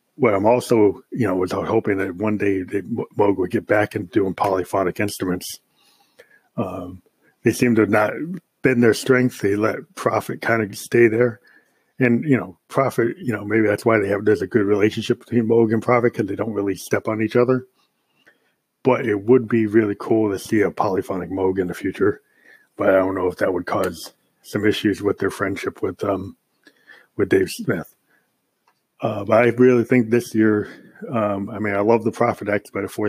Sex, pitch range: male, 100-115 Hz